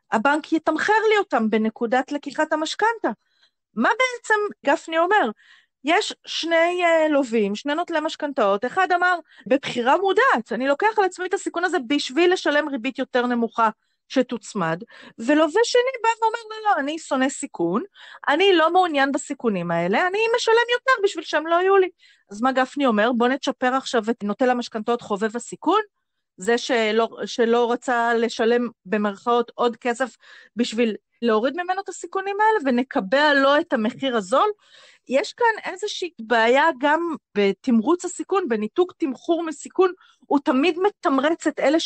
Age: 30-49